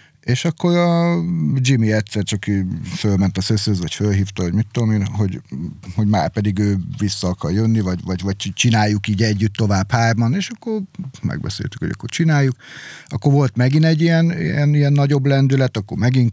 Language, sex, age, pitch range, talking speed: Hungarian, male, 50-69, 100-135 Hz, 175 wpm